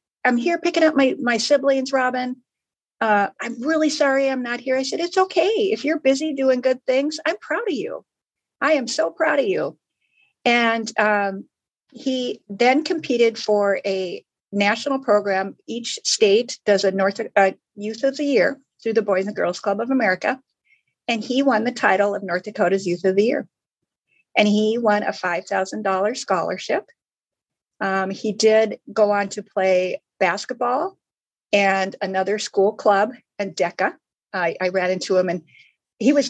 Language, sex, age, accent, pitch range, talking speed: English, female, 50-69, American, 205-270 Hz, 170 wpm